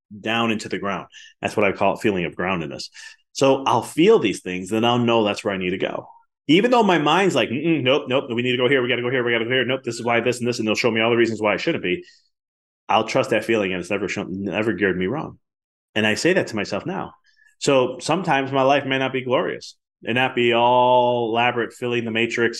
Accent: American